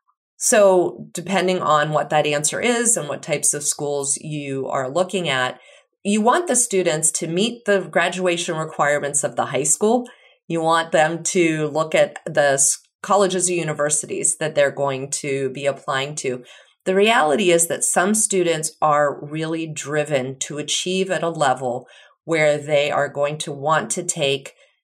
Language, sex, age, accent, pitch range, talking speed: English, female, 30-49, American, 145-190 Hz, 165 wpm